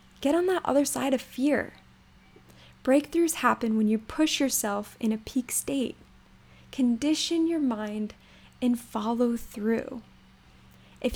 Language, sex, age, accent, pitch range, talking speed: English, female, 10-29, American, 225-280 Hz, 130 wpm